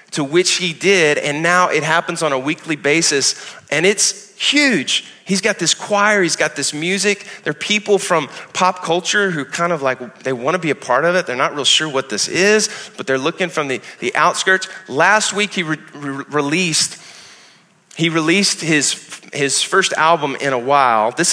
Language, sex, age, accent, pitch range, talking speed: English, male, 30-49, American, 140-185 Hz, 195 wpm